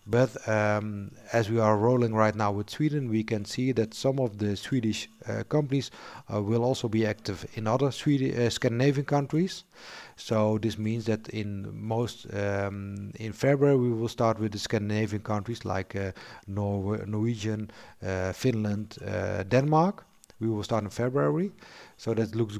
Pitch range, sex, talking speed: 105-125 Hz, male, 165 wpm